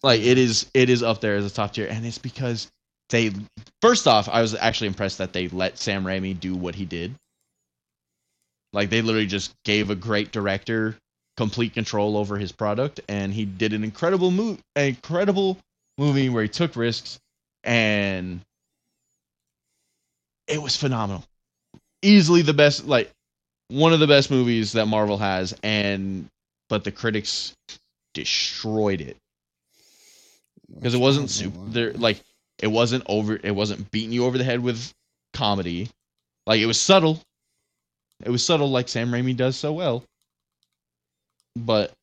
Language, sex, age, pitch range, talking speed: English, male, 20-39, 95-130 Hz, 155 wpm